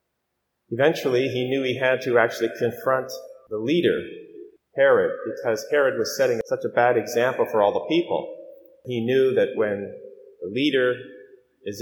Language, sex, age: English, male, 30-49